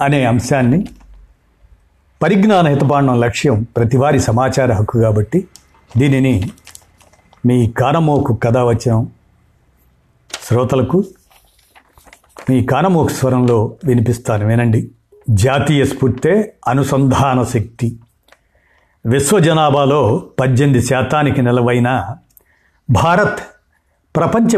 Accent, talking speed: native, 75 wpm